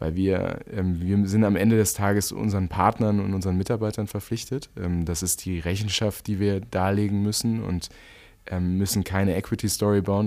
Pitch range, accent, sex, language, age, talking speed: 95-110 Hz, German, male, German, 20-39, 160 wpm